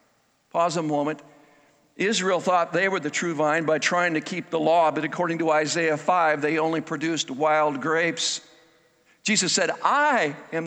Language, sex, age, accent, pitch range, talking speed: English, male, 60-79, American, 150-190 Hz, 170 wpm